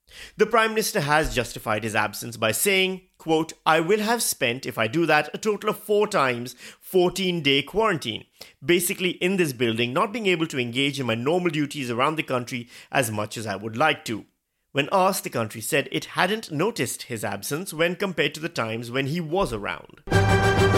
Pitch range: 120-195 Hz